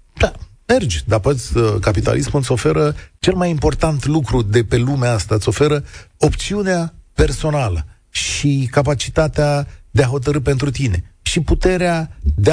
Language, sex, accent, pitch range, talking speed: Romanian, male, native, 115-150 Hz, 135 wpm